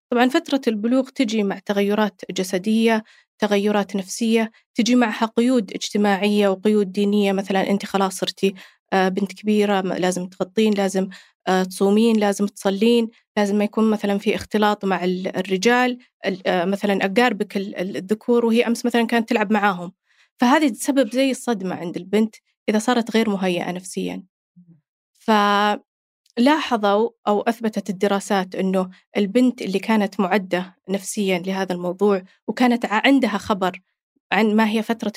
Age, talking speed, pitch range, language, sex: 20-39, 130 wpm, 195-230 Hz, Arabic, female